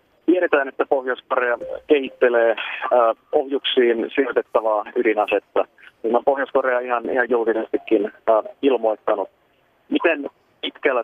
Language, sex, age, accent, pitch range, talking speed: Finnish, male, 30-49, native, 110-130 Hz, 100 wpm